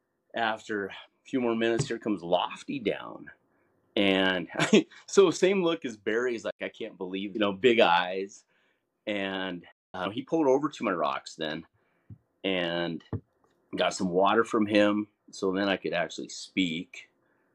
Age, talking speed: 30-49, 155 wpm